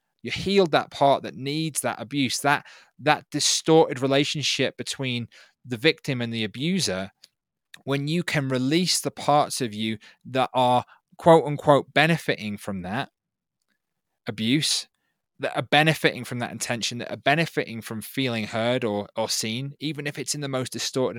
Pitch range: 115-145 Hz